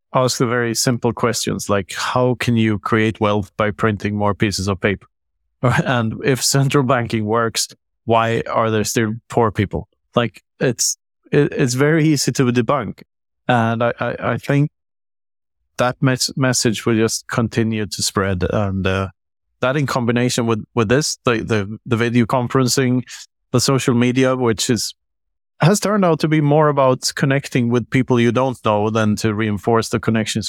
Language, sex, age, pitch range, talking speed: English, male, 30-49, 105-130 Hz, 165 wpm